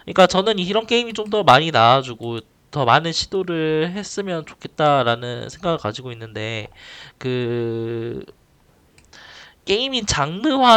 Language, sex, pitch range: Korean, male, 115-175 Hz